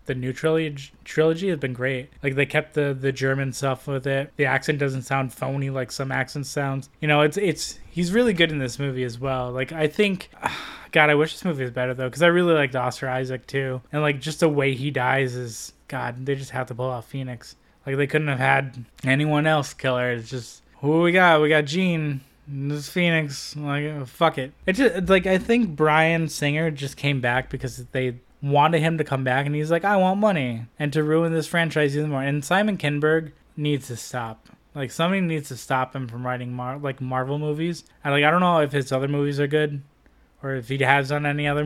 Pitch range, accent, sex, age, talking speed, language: 130-155 Hz, American, male, 20-39, 230 wpm, English